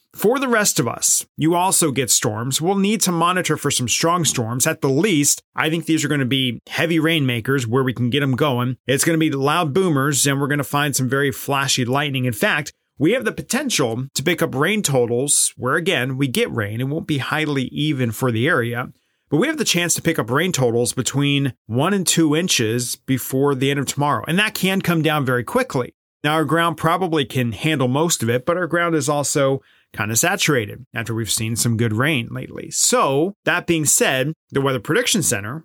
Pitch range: 125-160 Hz